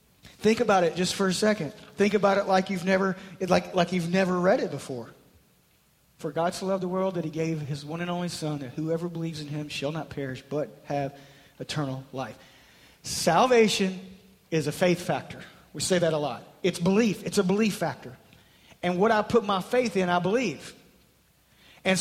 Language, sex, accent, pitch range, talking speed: English, male, American, 175-220 Hz, 195 wpm